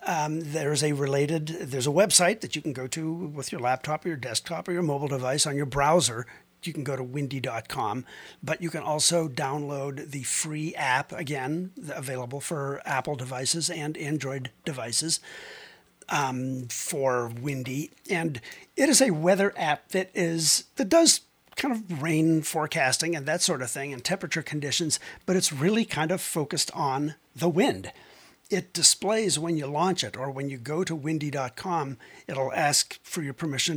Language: English